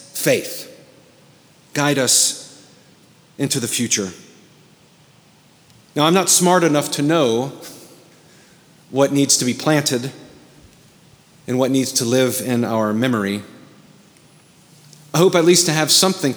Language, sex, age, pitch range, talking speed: English, male, 40-59, 135-180 Hz, 120 wpm